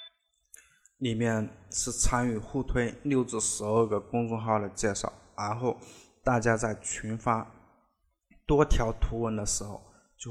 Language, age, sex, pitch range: Chinese, 20-39, male, 105-120 Hz